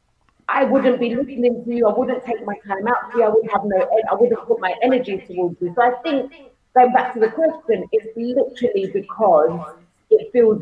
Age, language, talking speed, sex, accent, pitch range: 30-49, English, 210 wpm, female, British, 180-235 Hz